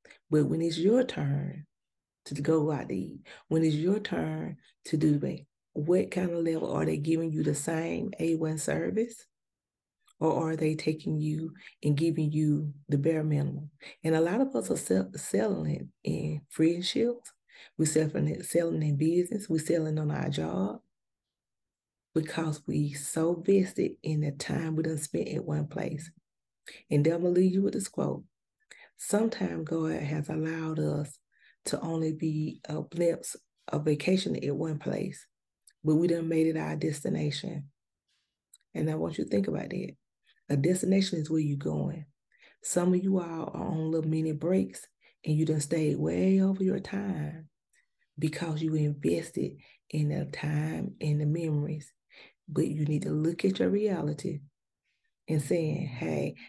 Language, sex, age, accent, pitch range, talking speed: English, female, 30-49, American, 150-170 Hz, 170 wpm